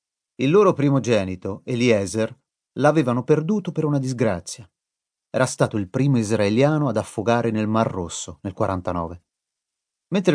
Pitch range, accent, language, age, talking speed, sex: 105-145 Hz, native, Italian, 30-49, 130 wpm, male